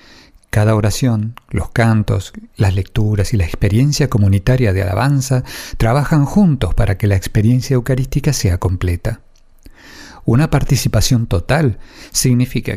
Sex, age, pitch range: male, 50-69, 105-130 Hz